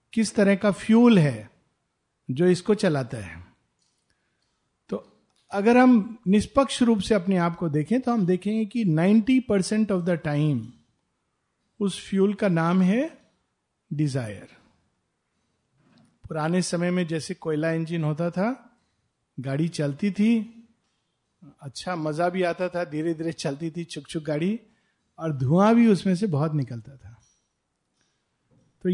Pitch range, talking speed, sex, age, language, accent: 150-225 Hz, 135 wpm, male, 50-69, Hindi, native